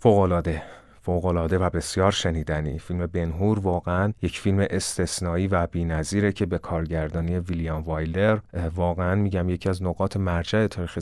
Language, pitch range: Persian, 85-100 Hz